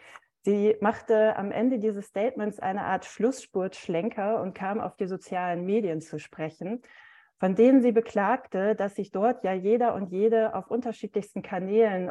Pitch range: 175-225 Hz